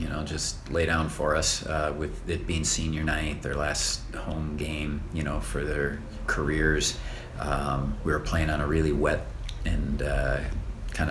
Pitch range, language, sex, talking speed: 75-85 Hz, English, male, 180 wpm